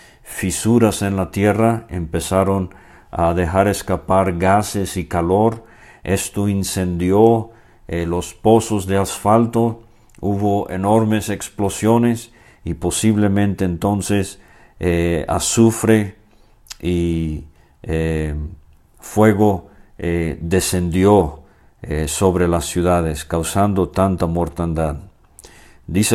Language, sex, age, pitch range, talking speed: English, male, 50-69, 85-105 Hz, 90 wpm